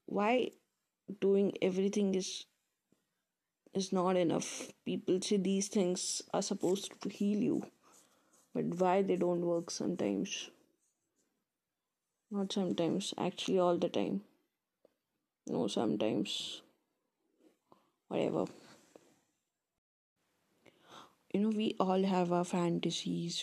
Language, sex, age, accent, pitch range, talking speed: English, female, 20-39, Indian, 175-205 Hz, 95 wpm